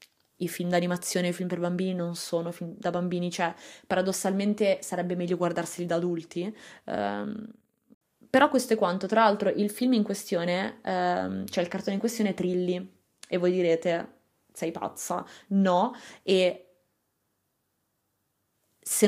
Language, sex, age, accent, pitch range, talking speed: Italian, female, 20-39, native, 180-215 Hz, 145 wpm